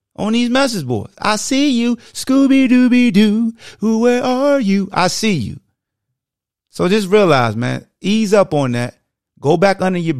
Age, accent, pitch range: 30-49, American, 110-150 Hz